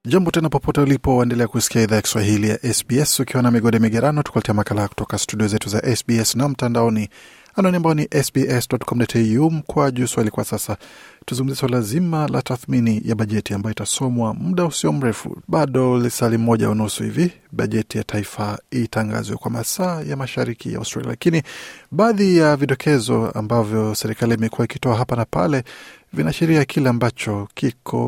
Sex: male